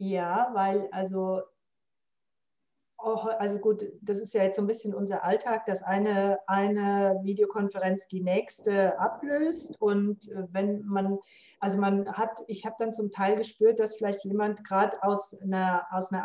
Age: 40-59